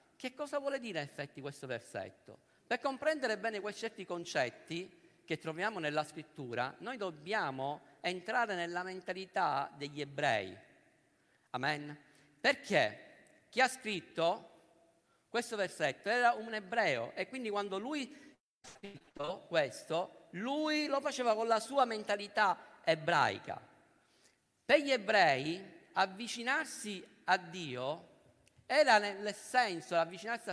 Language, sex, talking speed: Italian, male, 120 wpm